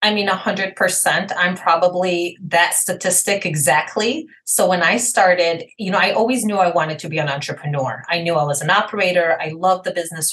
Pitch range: 165-210 Hz